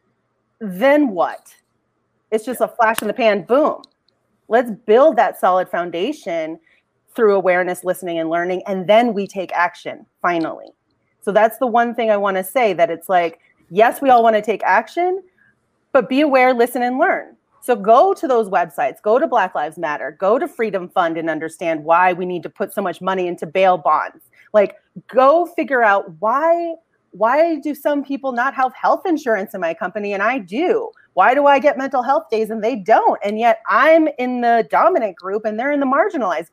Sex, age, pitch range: female, 30-49, 200-295 Hz